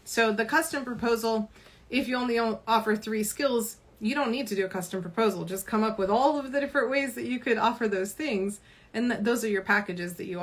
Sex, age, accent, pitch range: female, 30-49, American, 190-230 Hz